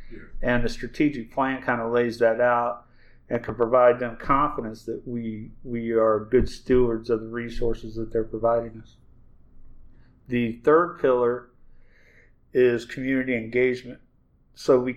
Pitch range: 115-125 Hz